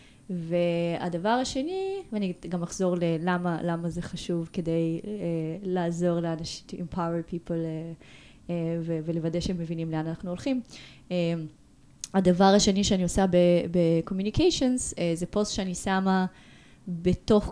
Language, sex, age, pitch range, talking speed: Hebrew, female, 20-39, 165-200 Hz, 110 wpm